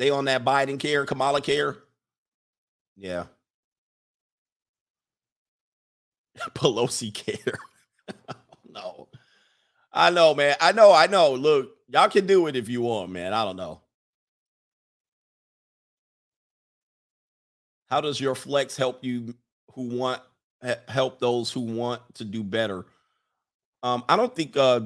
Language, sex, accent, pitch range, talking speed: English, male, American, 115-145 Hz, 120 wpm